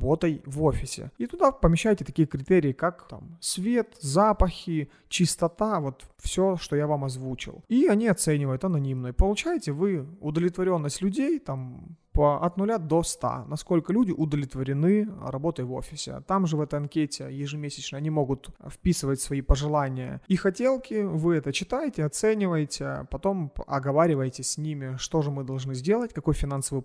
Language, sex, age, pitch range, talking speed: Russian, male, 30-49, 135-170 Hz, 145 wpm